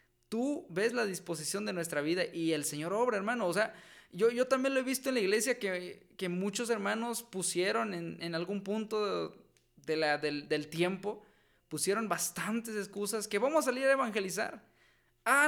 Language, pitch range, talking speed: Spanish, 170-235 Hz, 185 wpm